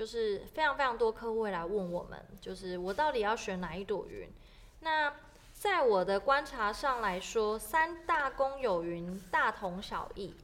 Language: Chinese